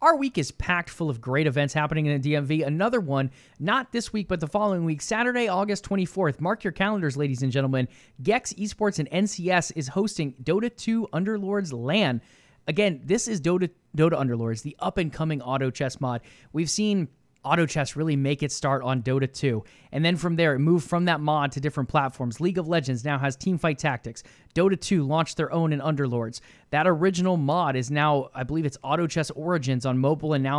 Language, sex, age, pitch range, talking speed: English, male, 20-39, 140-190 Hz, 205 wpm